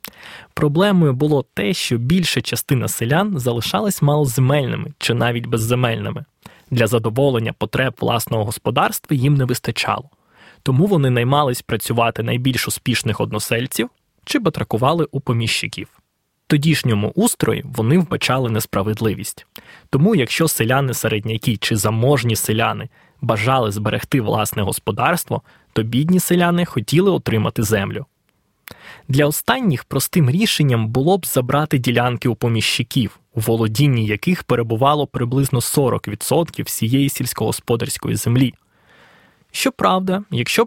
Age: 20-39